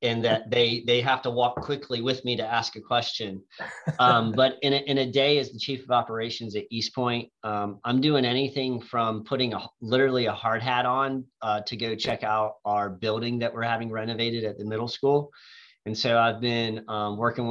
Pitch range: 105-120 Hz